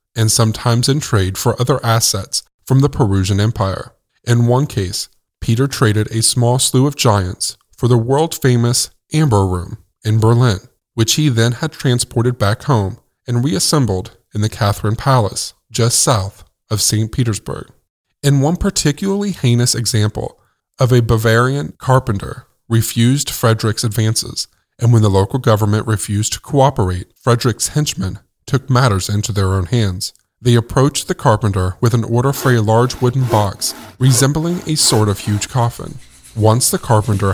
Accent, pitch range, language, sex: American, 105-130 Hz, English, male